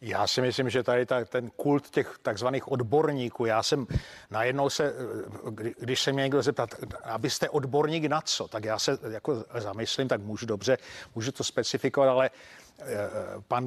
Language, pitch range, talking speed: Czech, 125-145 Hz, 160 wpm